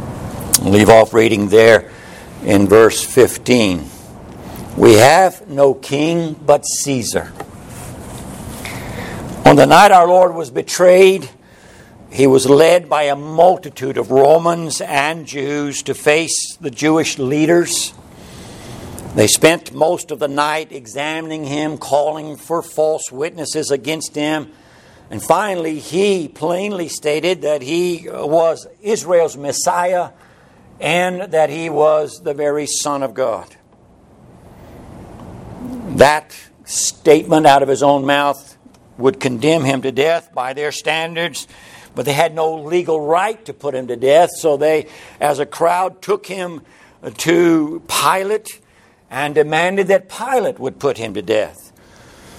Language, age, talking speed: English, 60-79, 130 wpm